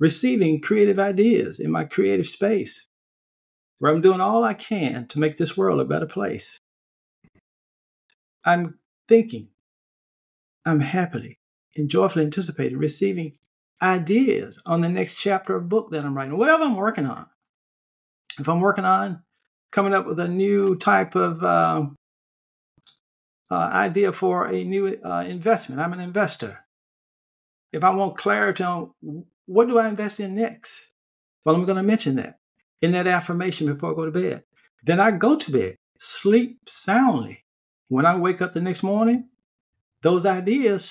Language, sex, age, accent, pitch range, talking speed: English, male, 50-69, American, 150-200 Hz, 155 wpm